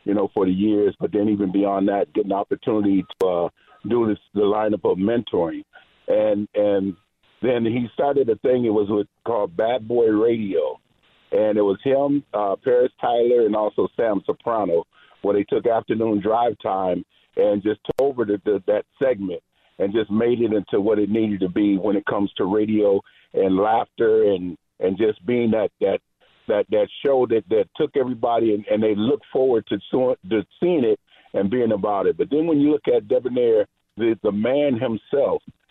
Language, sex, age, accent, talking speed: English, male, 50-69, American, 190 wpm